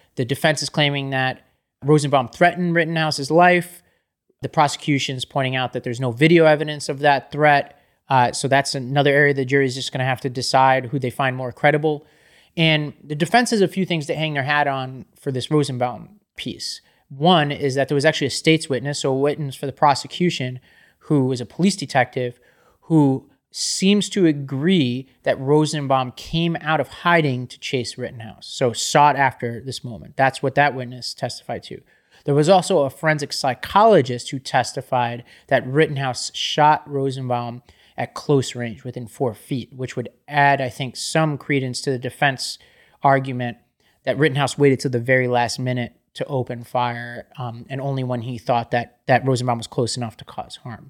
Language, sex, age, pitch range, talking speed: English, male, 30-49, 125-150 Hz, 180 wpm